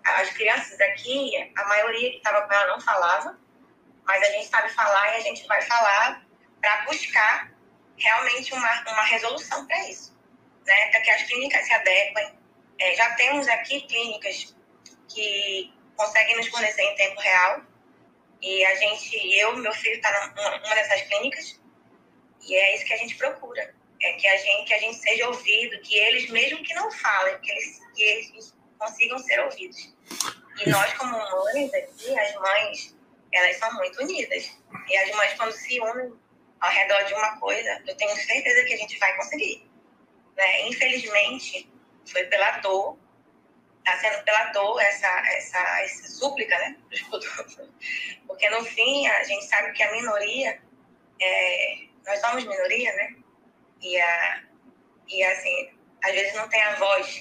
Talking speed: 160 wpm